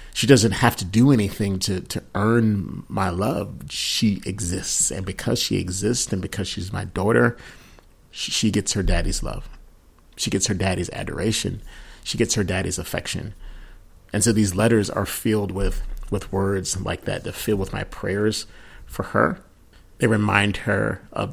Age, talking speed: 30-49, 165 wpm